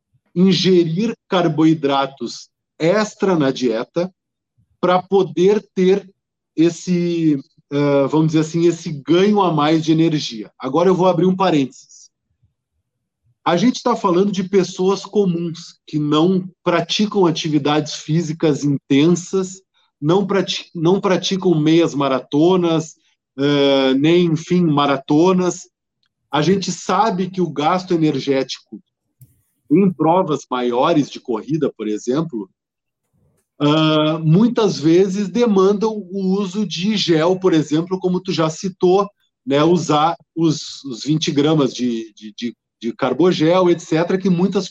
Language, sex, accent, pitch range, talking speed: Portuguese, male, Brazilian, 145-185 Hz, 110 wpm